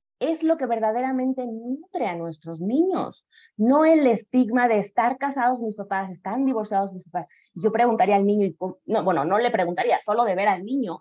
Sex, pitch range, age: female, 175-240 Hz, 30-49